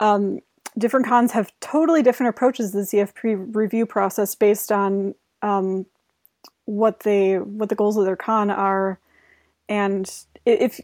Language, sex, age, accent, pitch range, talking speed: English, female, 20-39, American, 195-225 Hz, 145 wpm